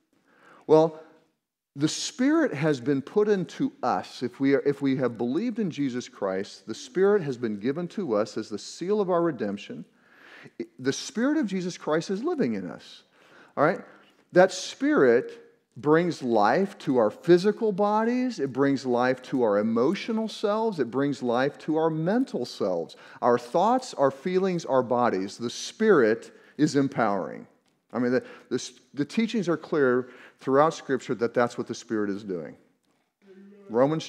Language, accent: English, American